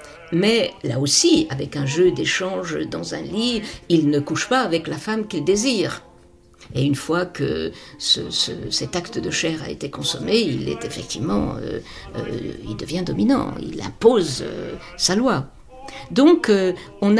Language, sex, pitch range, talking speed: French, female, 170-220 Hz, 160 wpm